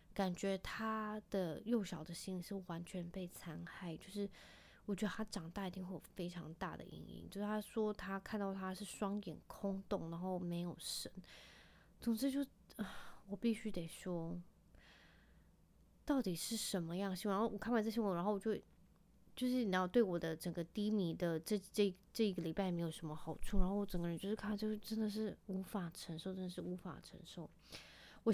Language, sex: Chinese, female